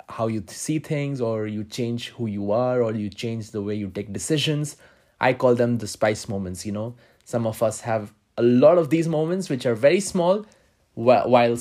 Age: 20-39